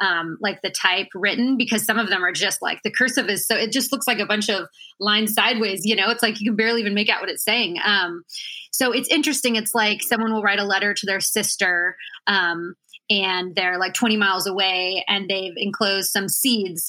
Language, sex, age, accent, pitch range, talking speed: English, female, 20-39, American, 190-225 Hz, 225 wpm